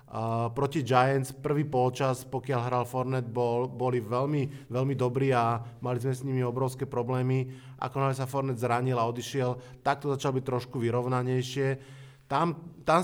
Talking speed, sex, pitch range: 155 wpm, male, 125-145 Hz